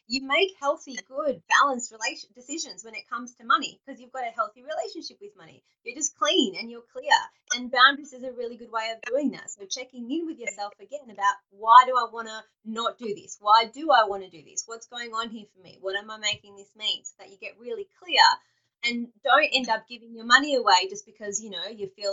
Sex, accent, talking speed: female, Australian, 240 wpm